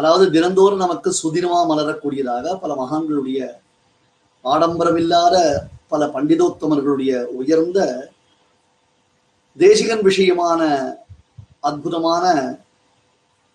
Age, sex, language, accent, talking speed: 30-49, male, Tamil, native, 60 wpm